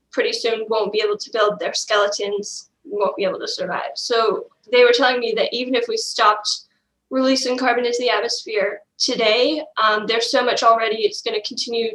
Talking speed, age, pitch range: 190 wpm, 10-29, 230-340 Hz